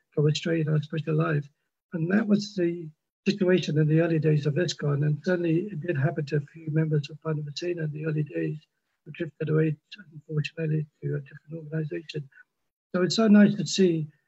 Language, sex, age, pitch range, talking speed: English, male, 60-79, 155-175 Hz, 190 wpm